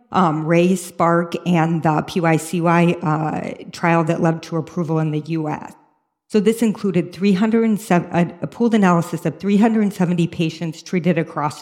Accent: American